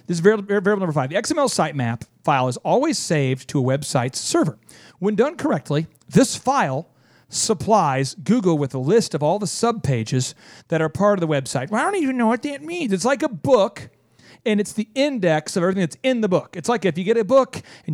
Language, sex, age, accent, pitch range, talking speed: English, male, 40-59, American, 160-225 Hz, 220 wpm